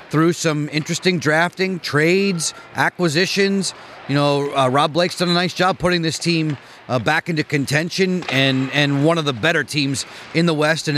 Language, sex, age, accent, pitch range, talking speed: English, male, 30-49, American, 145-180 Hz, 180 wpm